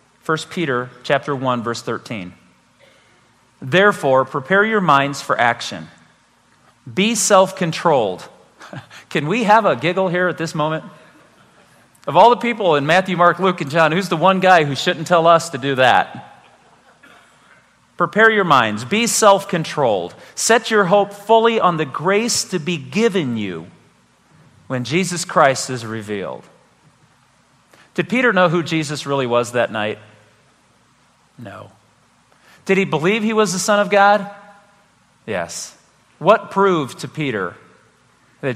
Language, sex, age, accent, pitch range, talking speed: English, male, 40-59, American, 125-190 Hz, 140 wpm